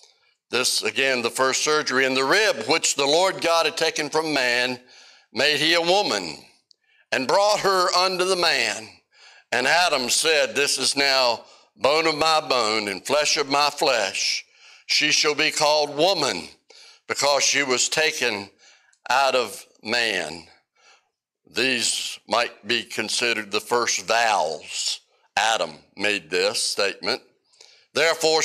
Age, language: 60-79, English